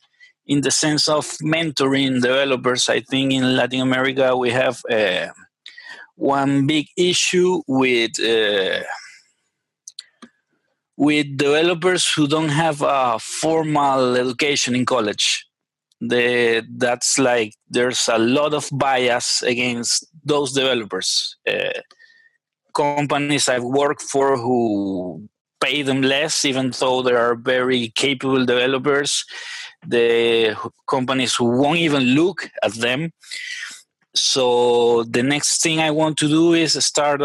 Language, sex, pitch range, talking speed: English, male, 125-155 Hz, 115 wpm